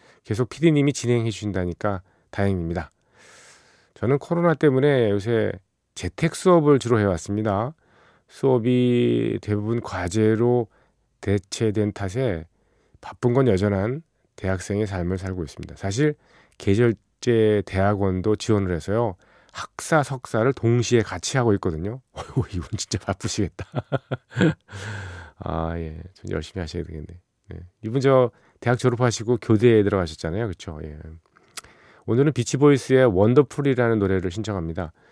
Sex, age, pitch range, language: male, 40-59, 95-125 Hz, Korean